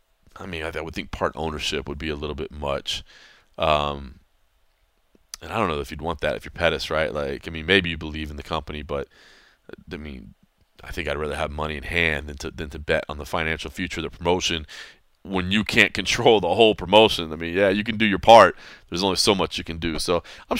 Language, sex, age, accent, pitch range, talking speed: English, male, 30-49, American, 80-105 Hz, 235 wpm